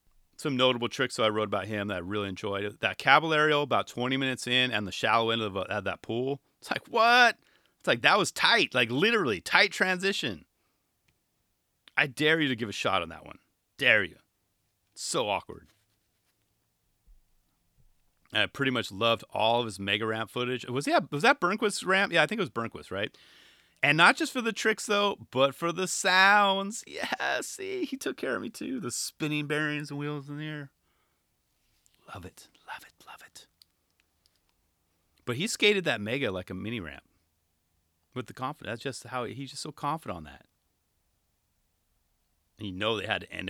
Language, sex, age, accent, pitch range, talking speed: English, male, 30-49, American, 90-145 Hz, 190 wpm